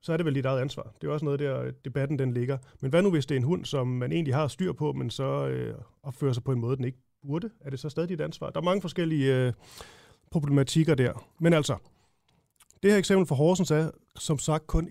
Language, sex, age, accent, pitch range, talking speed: Danish, male, 30-49, native, 130-165 Hz, 265 wpm